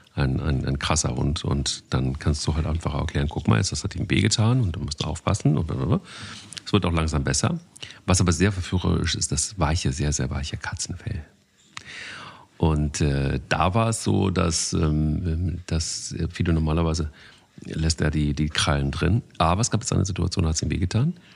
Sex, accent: male, German